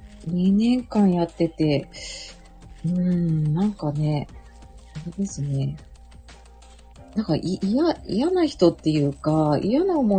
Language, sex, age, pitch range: Japanese, female, 40-59, 145-215 Hz